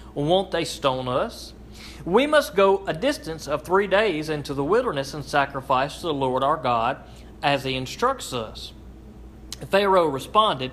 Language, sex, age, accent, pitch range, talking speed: English, male, 40-59, American, 130-185 Hz, 155 wpm